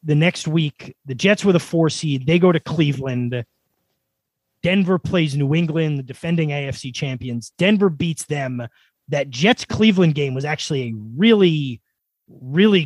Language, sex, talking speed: English, male, 150 wpm